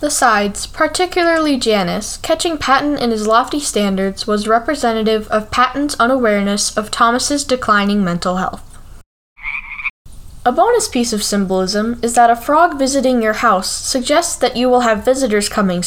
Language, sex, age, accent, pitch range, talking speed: English, female, 10-29, American, 210-270 Hz, 145 wpm